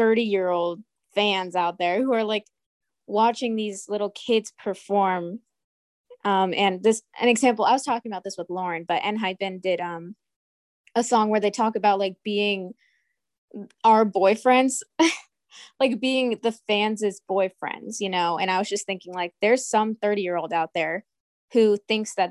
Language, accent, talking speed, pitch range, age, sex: English, American, 170 wpm, 180-220 Hz, 20-39, female